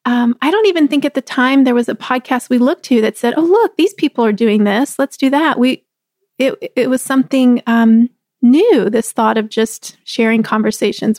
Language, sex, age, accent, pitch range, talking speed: English, female, 30-49, American, 235-285 Hz, 215 wpm